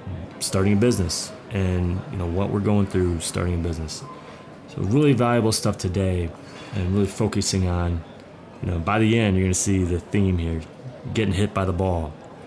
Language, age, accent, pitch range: English, 30-49, American, 95-120 Hz